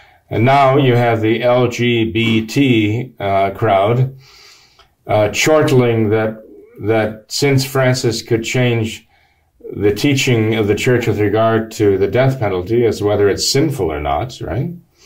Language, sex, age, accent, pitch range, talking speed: English, male, 50-69, American, 105-125 Hz, 135 wpm